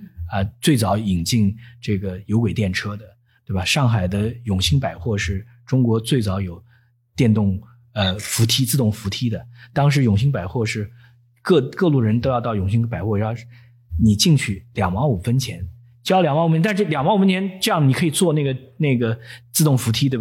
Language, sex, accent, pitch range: Chinese, male, native, 105-140 Hz